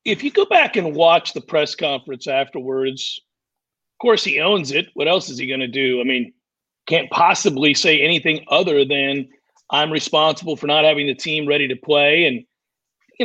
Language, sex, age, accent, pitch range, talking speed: English, male, 40-59, American, 140-185 Hz, 190 wpm